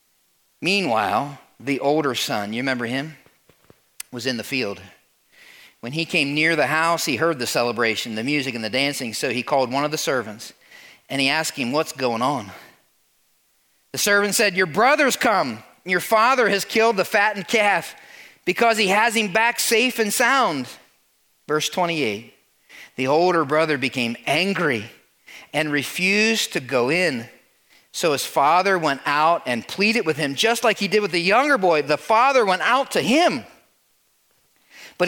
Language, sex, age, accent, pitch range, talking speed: English, male, 40-59, American, 145-225 Hz, 165 wpm